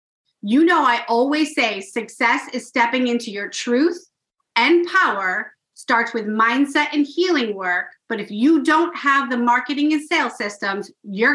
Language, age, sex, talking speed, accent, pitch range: English, 30-49, female, 160 wpm, American, 225-290 Hz